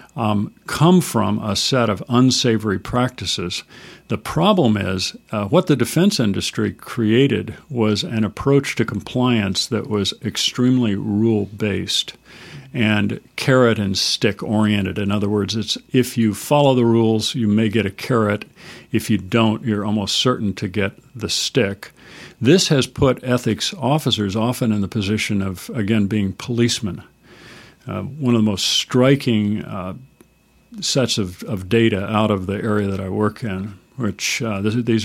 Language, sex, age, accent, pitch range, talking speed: English, male, 50-69, American, 105-125 Hz, 150 wpm